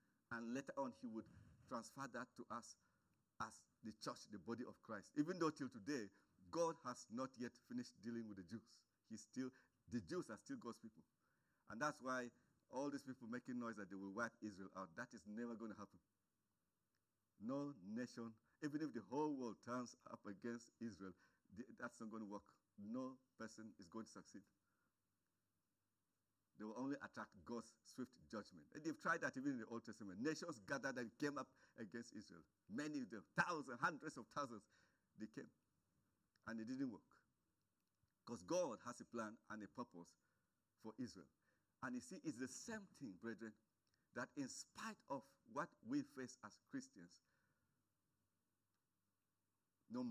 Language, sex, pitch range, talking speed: English, male, 105-155 Hz, 170 wpm